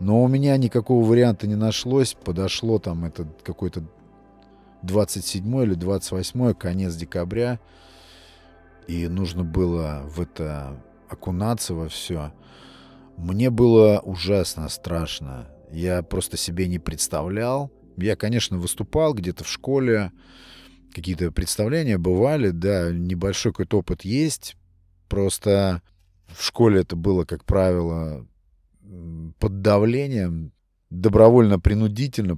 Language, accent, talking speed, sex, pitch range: Russian, native, 105 wpm, male, 85-110 Hz